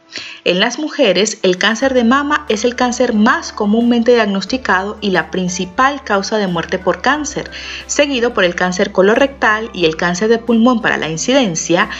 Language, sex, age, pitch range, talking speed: Spanish, female, 40-59, 180-255 Hz, 170 wpm